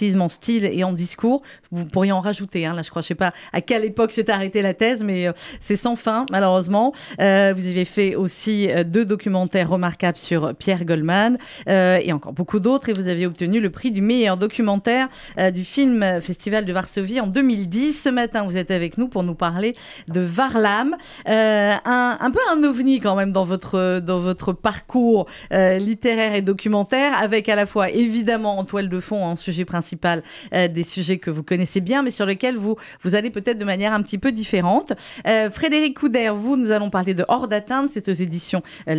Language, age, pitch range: French, 30-49, 185-235 Hz